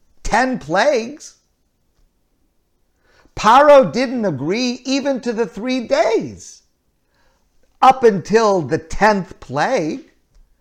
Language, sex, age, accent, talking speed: English, male, 50-69, American, 85 wpm